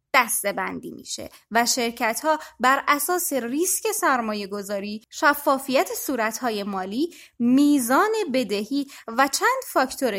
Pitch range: 220-330 Hz